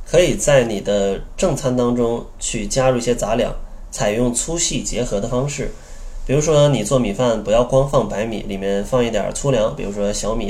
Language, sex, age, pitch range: Chinese, male, 20-39, 100-135 Hz